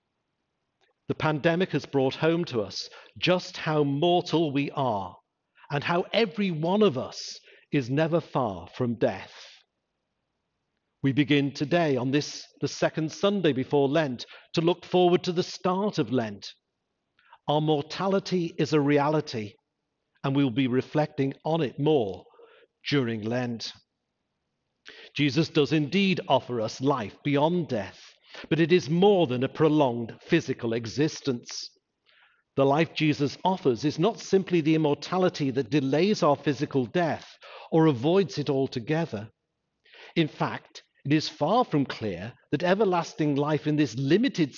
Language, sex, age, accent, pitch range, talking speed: English, male, 50-69, British, 135-170 Hz, 140 wpm